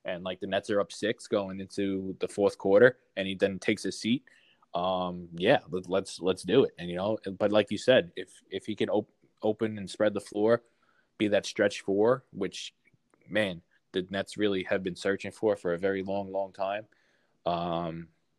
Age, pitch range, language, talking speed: 20-39, 90-100 Hz, English, 200 wpm